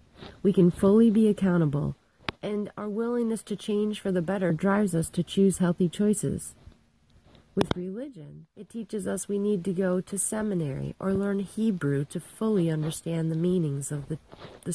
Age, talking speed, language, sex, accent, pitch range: 40-59, 165 wpm, English, female, American, 160-215 Hz